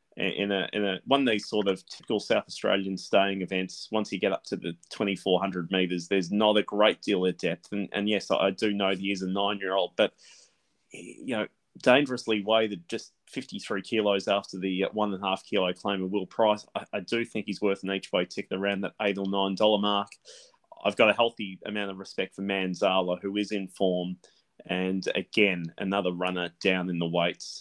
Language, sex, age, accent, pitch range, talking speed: English, male, 20-39, Australian, 95-110 Hz, 200 wpm